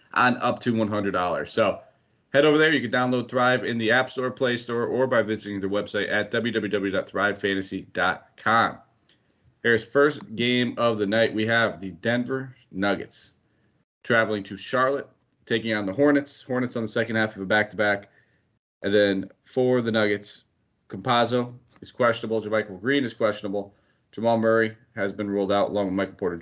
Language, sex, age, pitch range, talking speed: English, male, 30-49, 100-120 Hz, 165 wpm